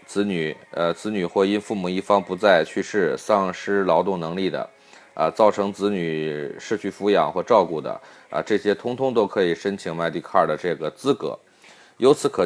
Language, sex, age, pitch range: Chinese, male, 20-39, 90-115 Hz